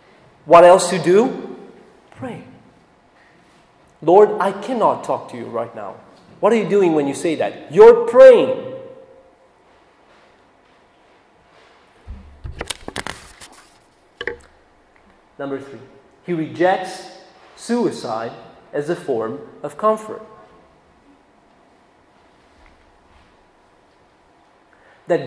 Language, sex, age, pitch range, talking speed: English, male, 30-49, 155-220 Hz, 80 wpm